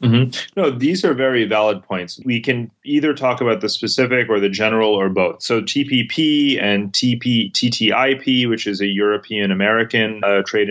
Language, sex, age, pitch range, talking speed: English, male, 30-49, 100-115 Hz, 165 wpm